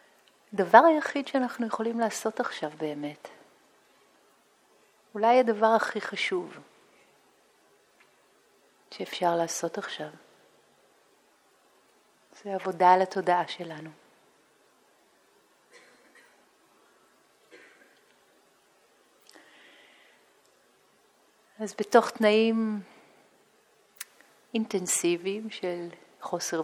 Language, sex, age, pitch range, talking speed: Hebrew, female, 40-59, 175-220 Hz, 55 wpm